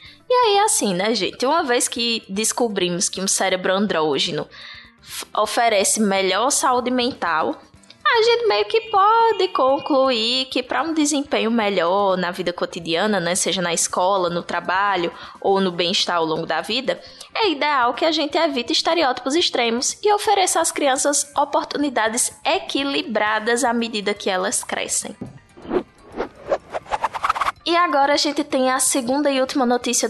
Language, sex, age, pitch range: Portuguese, female, 10-29, 200-280 Hz